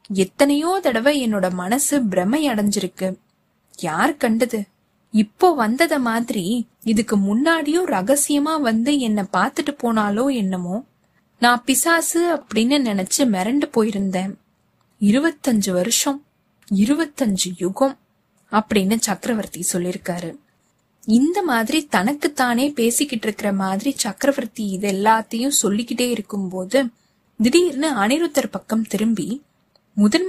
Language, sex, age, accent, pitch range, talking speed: Tamil, female, 20-39, native, 200-280 Hz, 65 wpm